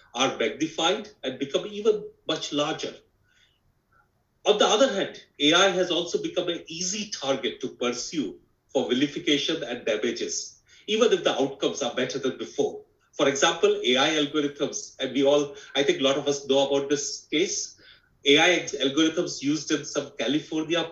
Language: English